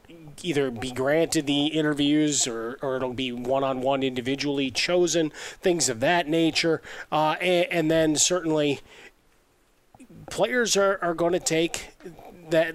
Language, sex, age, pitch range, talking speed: English, male, 30-49, 140-165 Hz, 130 wpm